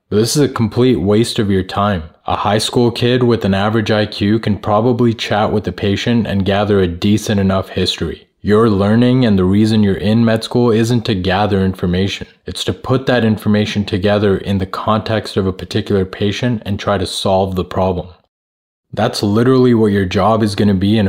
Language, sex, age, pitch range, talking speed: English, male, 20-39, 95-110 Hz, 200 wpm